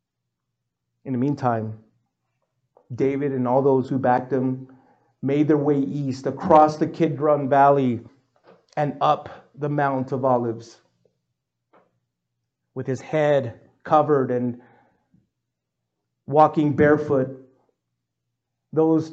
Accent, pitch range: American, 120-145 Hz